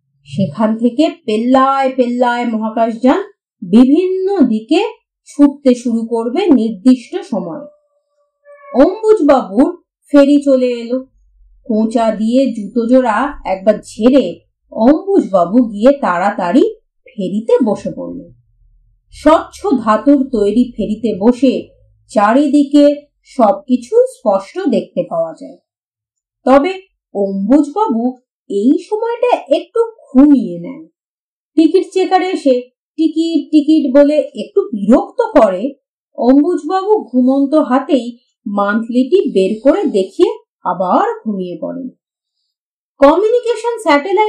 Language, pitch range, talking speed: Bengali, 220-310 Hz, 50 wpm